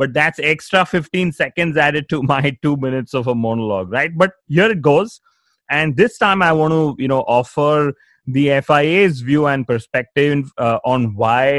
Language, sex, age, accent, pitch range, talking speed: English, male, 30-49, Indian, 115-145 Hz, 180 wpm